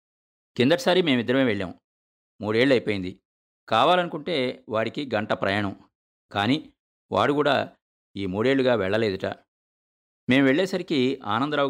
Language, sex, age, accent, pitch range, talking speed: Telugu, male, 50-69, native, 95-135 Hz, 85 wpm